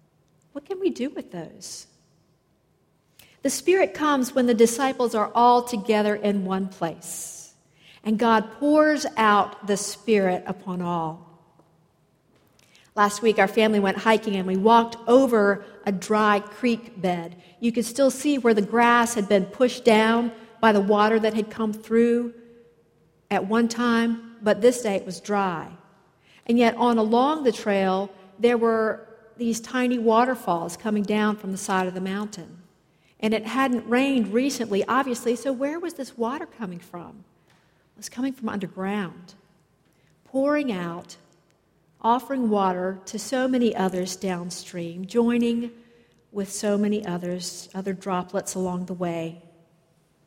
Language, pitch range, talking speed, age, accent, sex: English, 185-235 Hz, 145 wpm, 50-69, American, female